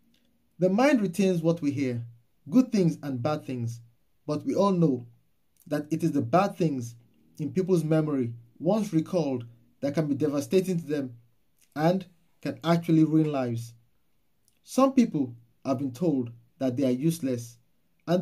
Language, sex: English, male